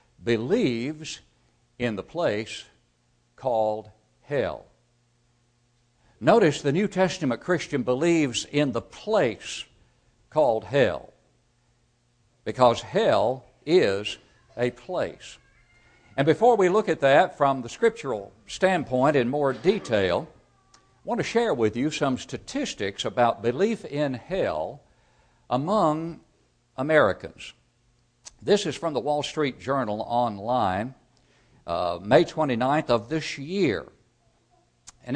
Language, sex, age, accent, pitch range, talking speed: English, male, 60-79, American, 120-165 Hz, 110 wpm